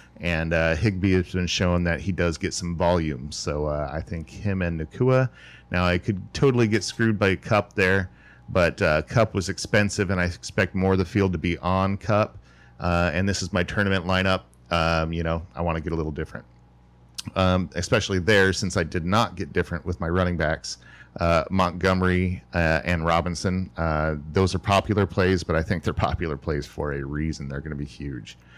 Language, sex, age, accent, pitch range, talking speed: English, male, 40-59, American, 80-100 Hz, 205 wpm